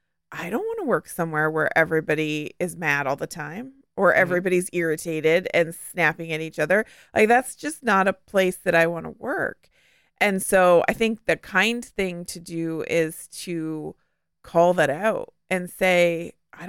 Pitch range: 165-215 Hz